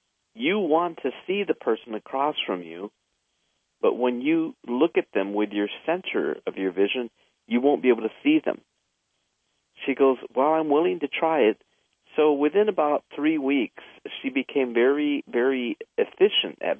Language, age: English, 50-69